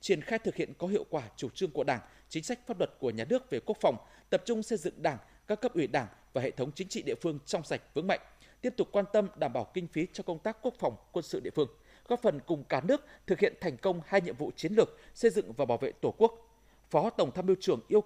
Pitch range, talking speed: 165-230 Hz, 285 wpm